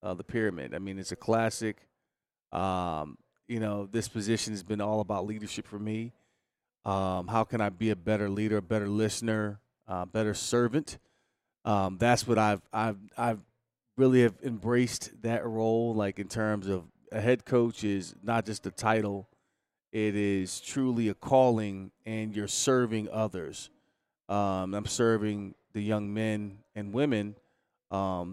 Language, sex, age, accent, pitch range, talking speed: English, male, 30-49, American, 100-115 Hz, 160 wpm